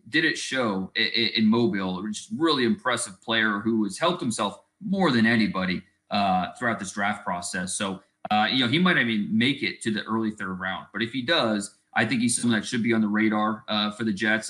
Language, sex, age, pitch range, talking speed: English, male, 30-49, 110-165 Hz, 235 wpm